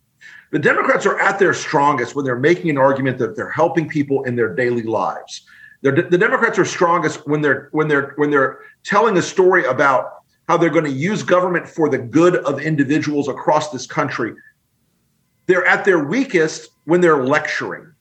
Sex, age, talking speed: male, 40-59, 180 wpm